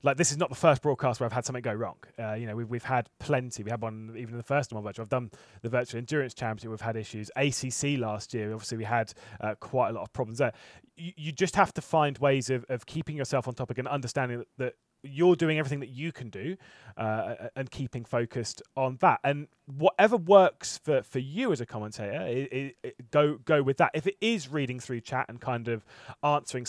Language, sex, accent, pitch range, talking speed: English, male, British, 120-145 Hz, 240 wpm